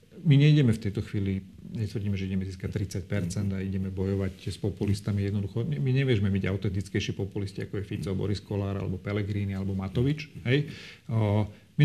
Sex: male